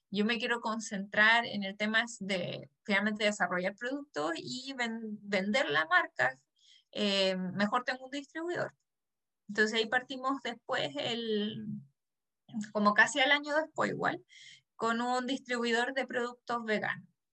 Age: 20-39